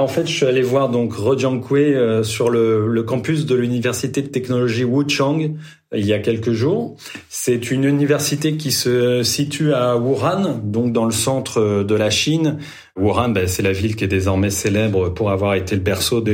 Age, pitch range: 30-49, 115-140 Hz